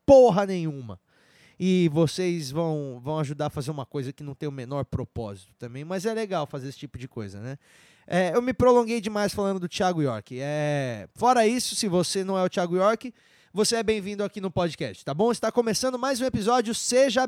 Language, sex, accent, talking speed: Portuguese, male, Brazilian, 210 wpm